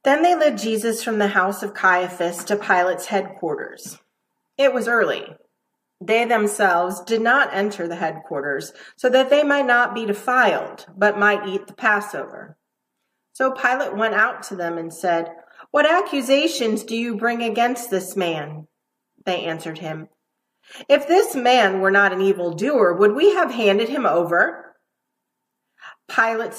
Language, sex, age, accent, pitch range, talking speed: English, female, 40-59, American, 190-255 Hz, 150 wpm